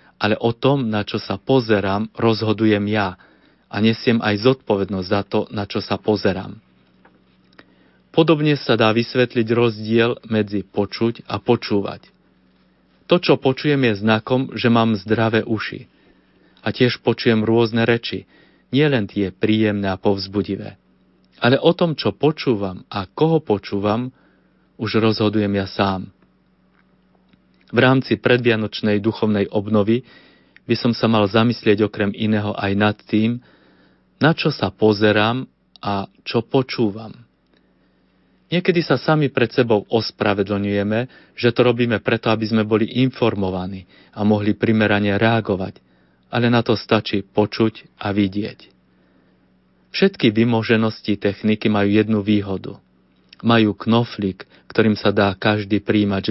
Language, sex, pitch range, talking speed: Slovak, male, 100-115 Hz, 125 wpm